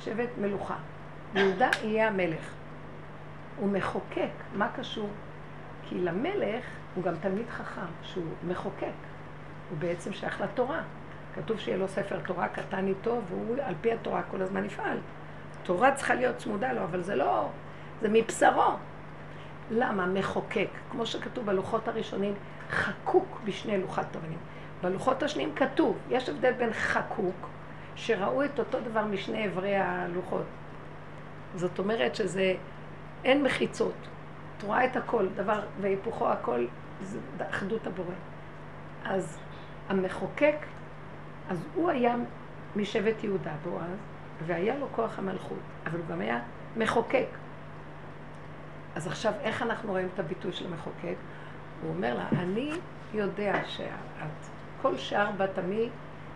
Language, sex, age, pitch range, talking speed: Hebrew, female, 50-69, 190-235 Hz, 125 wpm